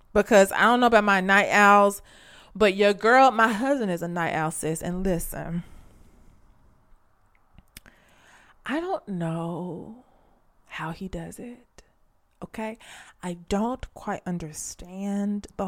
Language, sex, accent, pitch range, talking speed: English, female, American, 170-210 Hz, 125 wpm